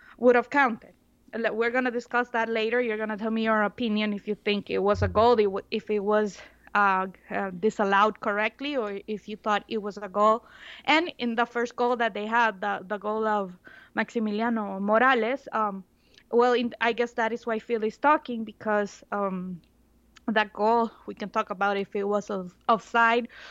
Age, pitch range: 20-39, 210-245 Hz